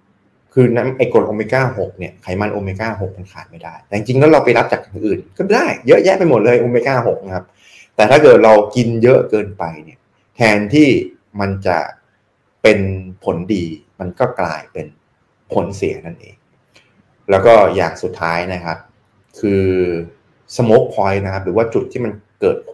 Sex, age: male, 20-39